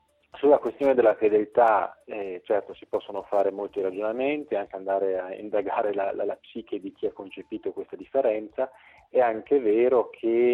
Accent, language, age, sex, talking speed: native, Italian, 30-49, male, 165 wpm